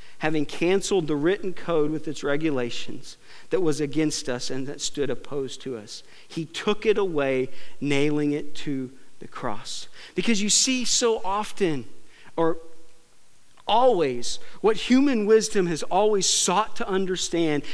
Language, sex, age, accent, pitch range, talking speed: English, male, 40-59, American, 130-165 Hz, 140 wpm